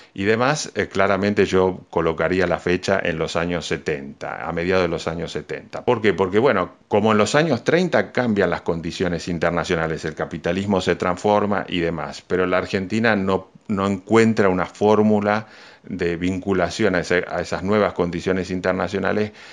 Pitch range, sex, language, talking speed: 85-105 Hz, male, Spanish, 165 wpm